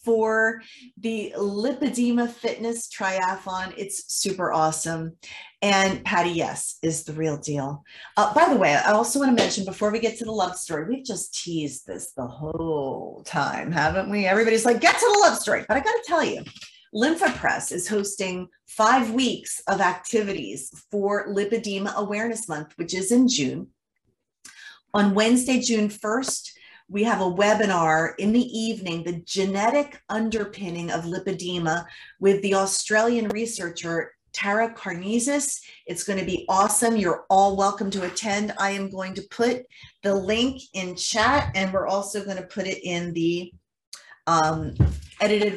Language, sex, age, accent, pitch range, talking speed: English, female, 30-49, American, 185-225 Hz, 160 wpm